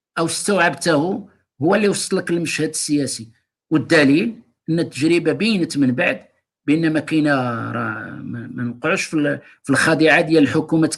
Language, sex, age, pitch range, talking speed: Arabic, male, 50-69, 155-215 Hz, 130 wpm